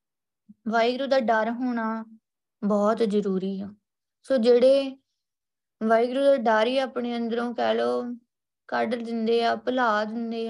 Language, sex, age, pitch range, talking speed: Punjabi, female, 20-39, 215-250 Hz, 120 wpm